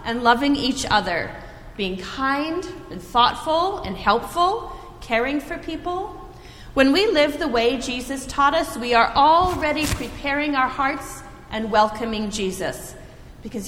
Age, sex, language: 30-49, female, English